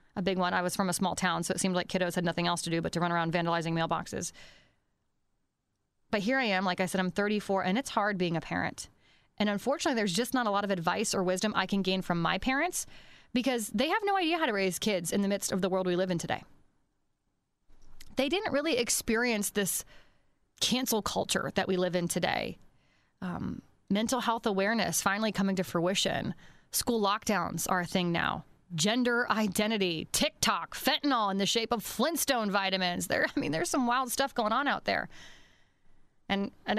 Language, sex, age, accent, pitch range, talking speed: English, female, 20-39, American, 190-240 Hz, 205 wpm